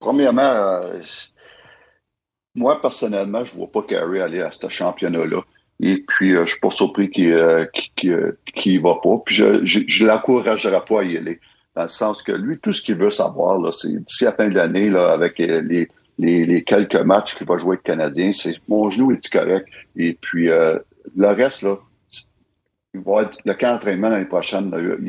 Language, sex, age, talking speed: French, male, 60-79, 200 wpm